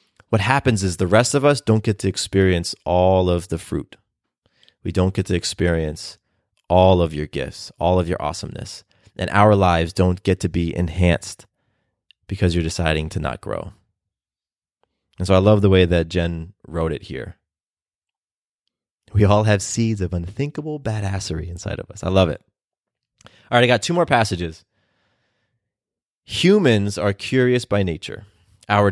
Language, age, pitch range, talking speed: English, 30-49, 95-125 Hz, 165 wpm